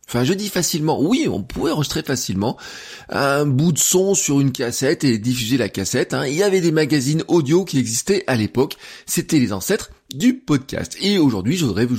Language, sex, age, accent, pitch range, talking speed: French, male, 20-39, French, 120-175 Hz, 200 wpm